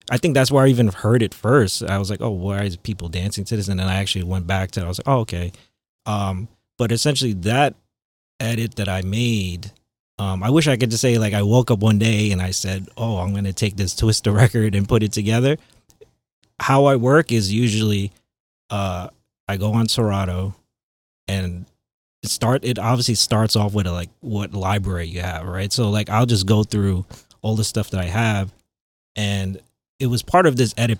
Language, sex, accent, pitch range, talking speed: English, male, American, 95-115 Hz, 215 wpm